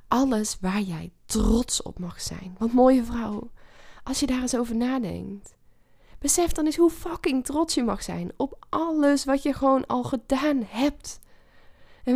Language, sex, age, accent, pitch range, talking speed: Dutch, female, 10-29, Dutch, 215-270 Hz, 170 wpm